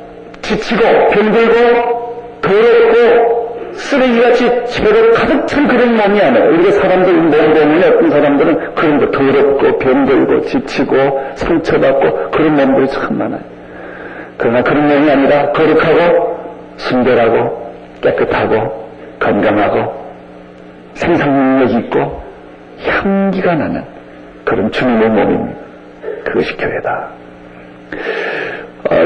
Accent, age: native, 50-69